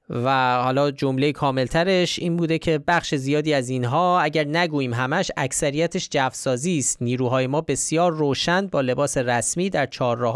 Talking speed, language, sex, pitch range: 150 wpm, Persian, male, 125-160 Hz